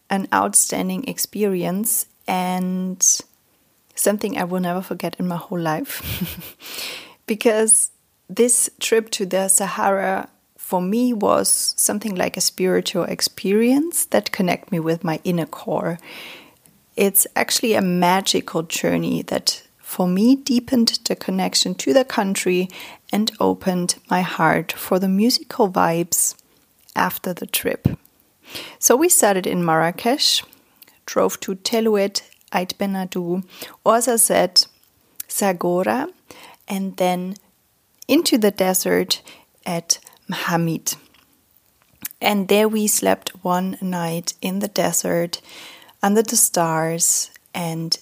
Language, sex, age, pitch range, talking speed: English, female, 30-49, 170-215 Hz, 115 wpm